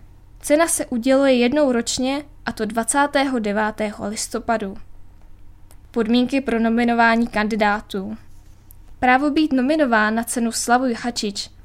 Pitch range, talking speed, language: 215-260 Hz, 105 wpm, Czech